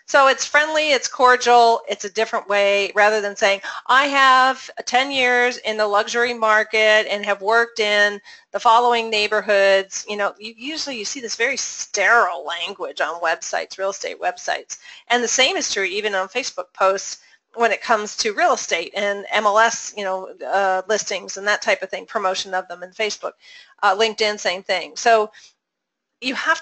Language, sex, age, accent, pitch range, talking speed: English, female, 40-59, American, 200-245 Hz, 180 wpm